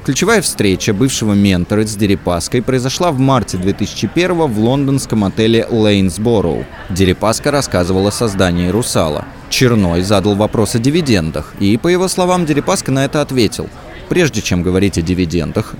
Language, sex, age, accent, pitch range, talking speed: Russian, male, 20-39, native, 95-140 Hz, 140 wpm